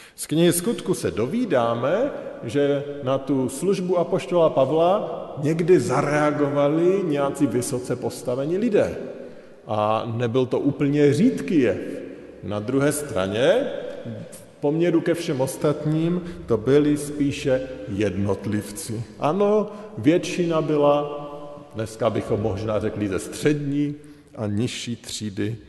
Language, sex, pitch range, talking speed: Slovak, male, 120-165 Hz, 110 wpm